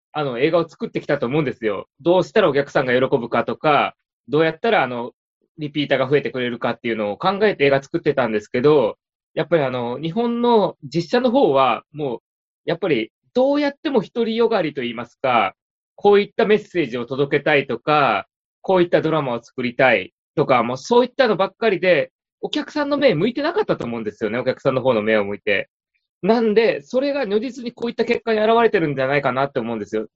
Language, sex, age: Japanese, male, 20-39